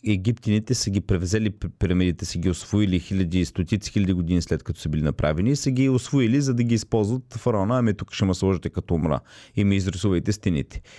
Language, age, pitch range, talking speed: Bulgarian, 30-49, 100-125 Hz, 210 wpm